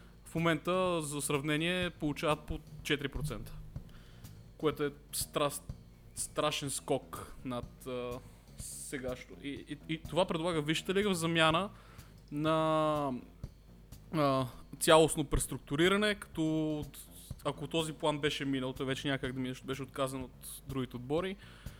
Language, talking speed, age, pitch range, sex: Bulgarian, 120 wpm, 20-39, 135-155 Hz, male